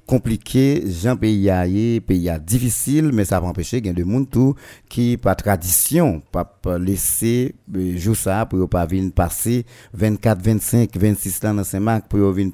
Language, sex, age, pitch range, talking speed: French, male, 50-69, 95-125 Hz, 165 wpm